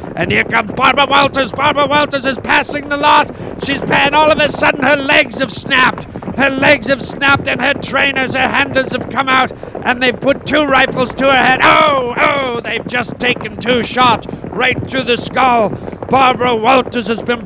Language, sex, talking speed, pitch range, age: English, male, 190 wpm, 245-290 Hz, 50-69